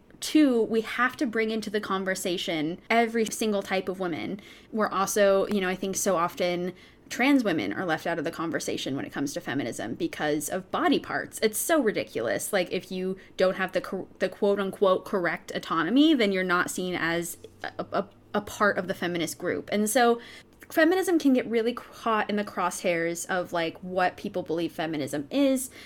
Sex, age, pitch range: female, 20-39, 180-215 Hz